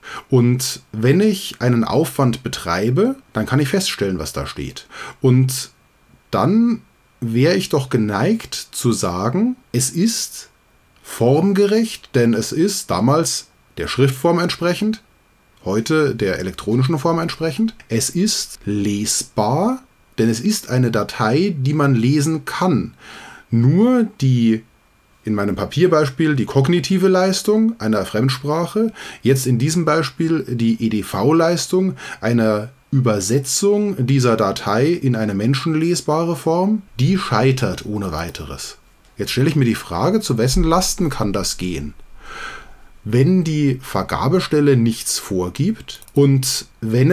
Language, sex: German, male